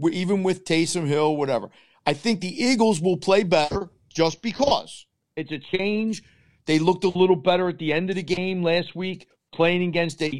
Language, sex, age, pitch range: English, male, 50-69, 150-195 Hz